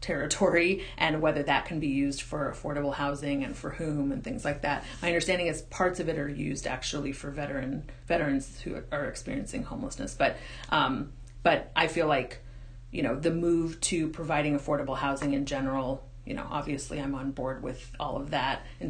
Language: English